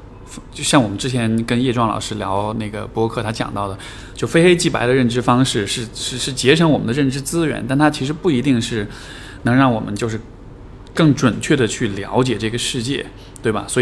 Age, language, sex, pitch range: 20-39, Chinese, male, 105-135 Hz